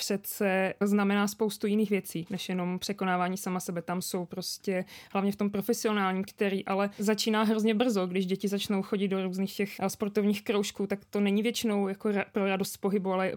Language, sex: Czech, female